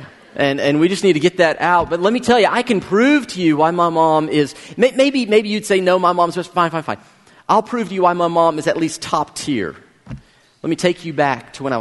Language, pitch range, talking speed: English, 145-185 Hz, 275 wpm